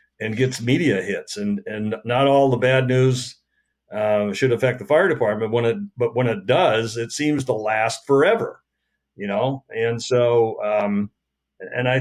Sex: male